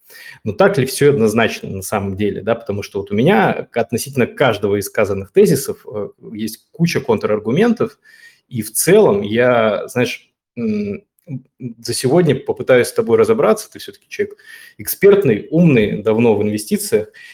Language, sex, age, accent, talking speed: Russian, male, 20-39, native, 140 wpm